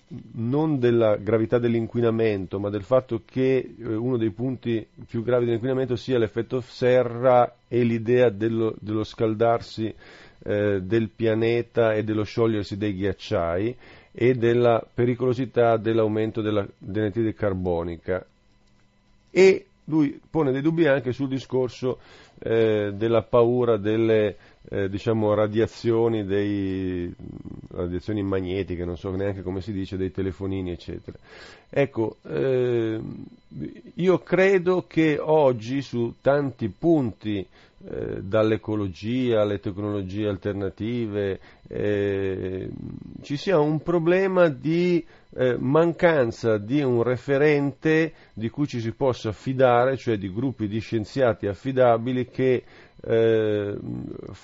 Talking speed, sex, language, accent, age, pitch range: 110 wpm, male, Italian, native, 40-59, 105-130 Hz